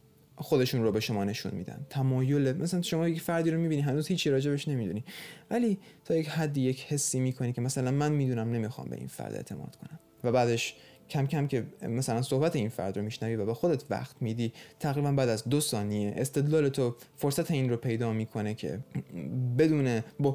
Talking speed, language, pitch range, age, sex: 190 wpm, Persian, 115-145 Hz, 20-39, male